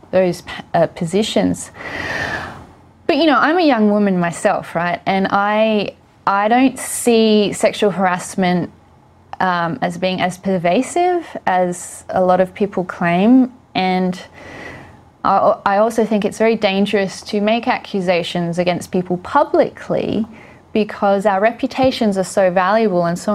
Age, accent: 20-39, Australian